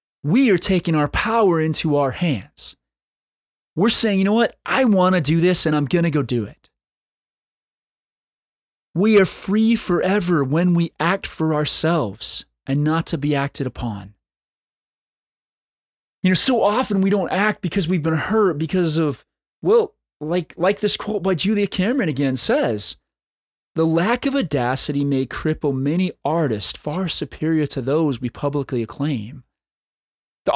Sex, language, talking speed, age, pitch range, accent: male, English, 155 wpm, 30-49, 150-205 Hz, American